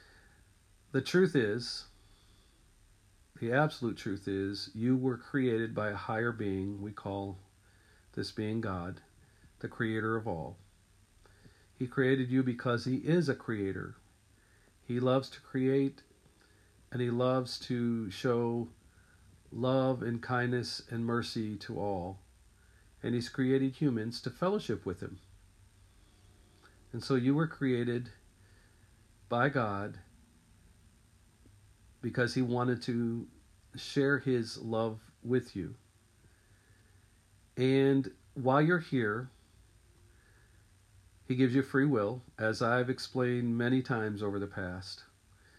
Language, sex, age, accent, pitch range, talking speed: English, male, 50-69, American, 100-125 Hz, 115 wpm